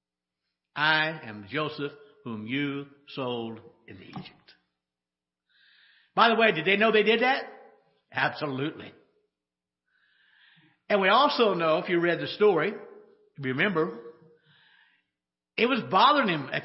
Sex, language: male, English